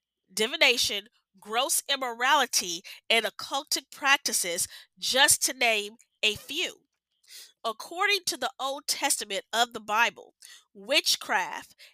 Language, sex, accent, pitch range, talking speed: English, female, American, 230-305 Hz, 100 wpm